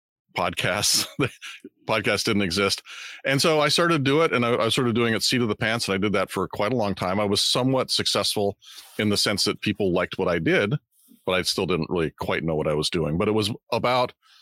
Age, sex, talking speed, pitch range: 40-59, male, 240 wpm, 90-115 Hz